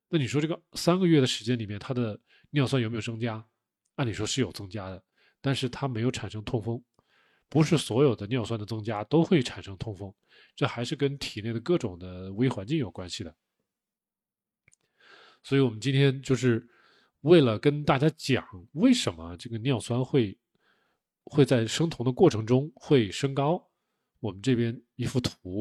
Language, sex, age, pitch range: Chinese, male, 20-39, 110-140 Hz